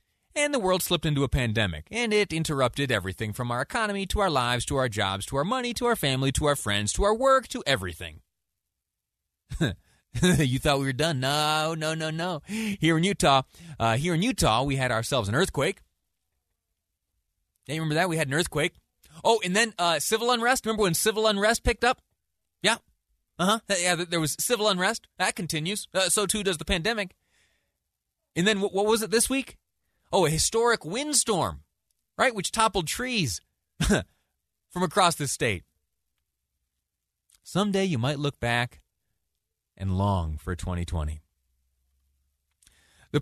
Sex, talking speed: male, 165 wpm